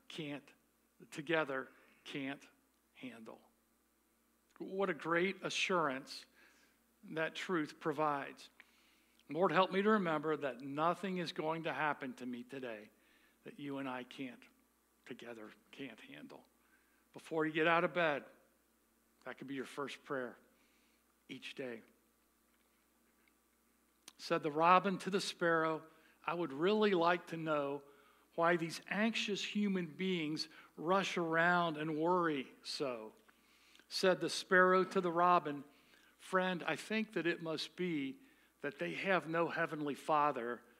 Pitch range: 145-180 Hz